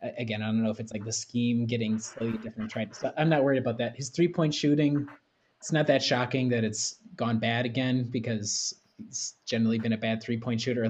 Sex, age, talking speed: male, 20-39, 215 wpm